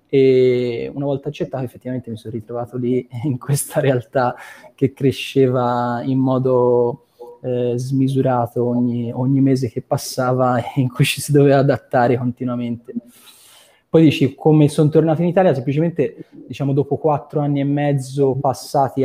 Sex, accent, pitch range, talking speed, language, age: male, native, 120-140 Hz, 145 wpm, Italian, 20-39